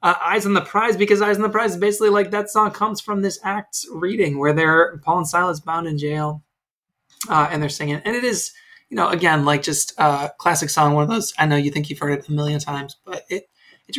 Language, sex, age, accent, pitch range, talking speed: English, male, 20-39, American, 145-180 Hz, 255 wpm